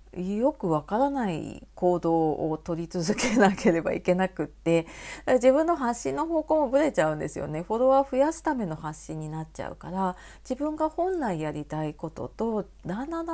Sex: female